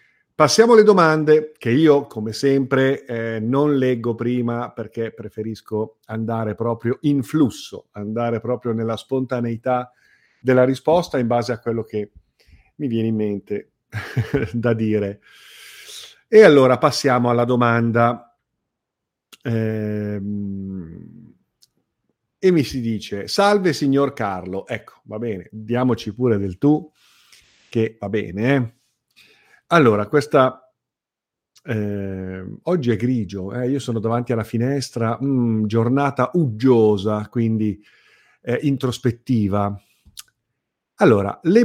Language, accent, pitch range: Italian, native, 110-135 Hz